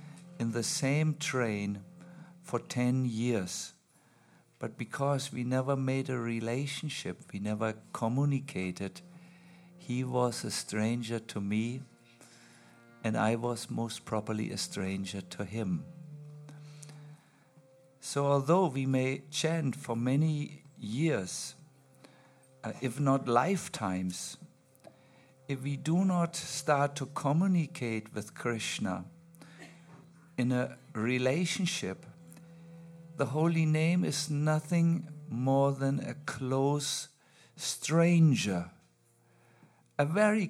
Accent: German